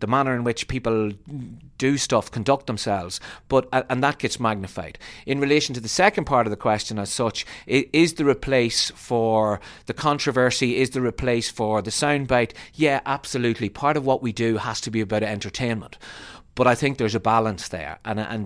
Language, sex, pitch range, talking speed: English, male, 110-135 Hz, 190 wpm